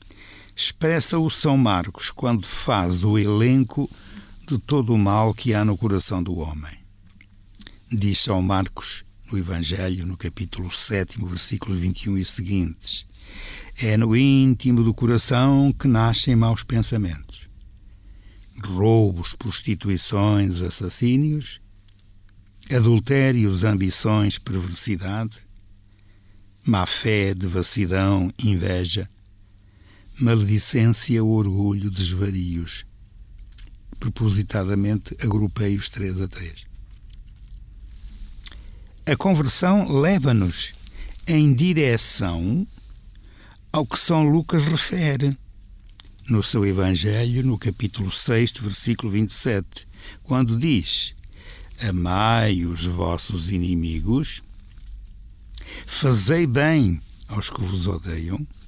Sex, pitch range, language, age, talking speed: male, 95-115 Hz, Portuguese, 60-79, 90 wpm